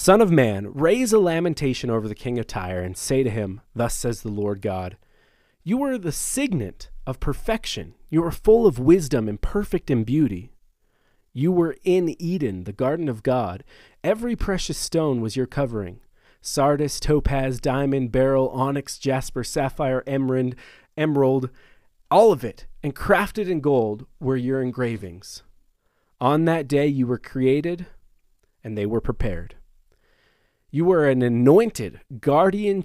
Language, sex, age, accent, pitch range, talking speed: English, male, 30-49, American, 110-155 Hz, 150 wpm